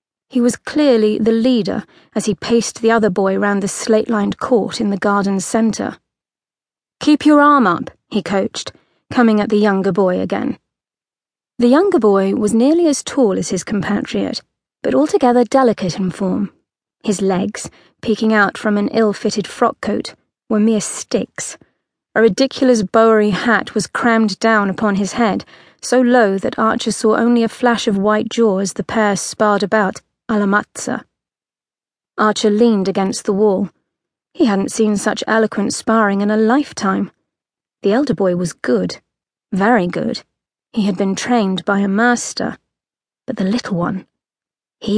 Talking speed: 155 wpm